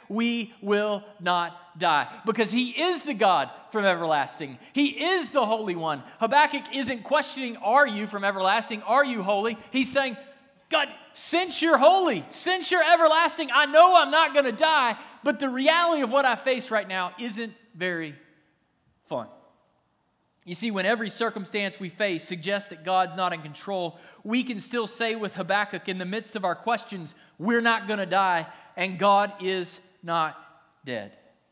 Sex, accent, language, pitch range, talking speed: male, American, English, 180-255 Hz, 170 wpm